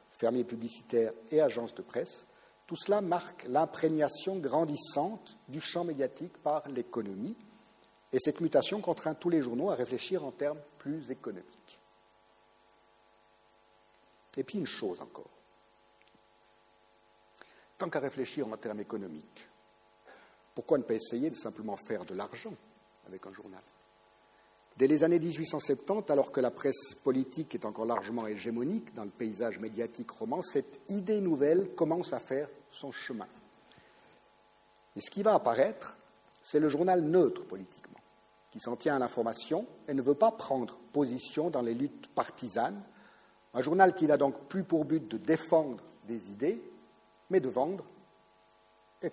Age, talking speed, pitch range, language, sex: 50-69, 145 wpm, 105-160 Hz, French, male